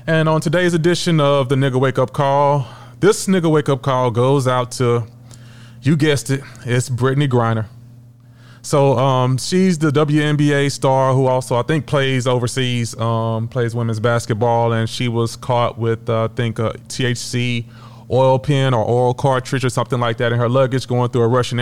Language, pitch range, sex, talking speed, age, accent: English, 115-135 Hz, male, 185 wpm, 30-49, American